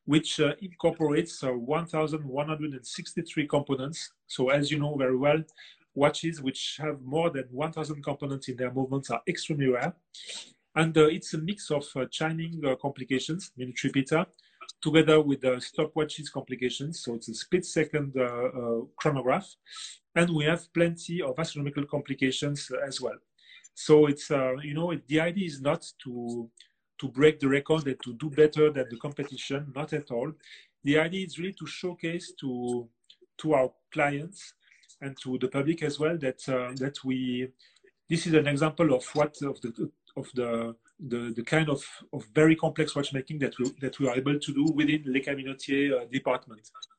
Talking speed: 175 wpm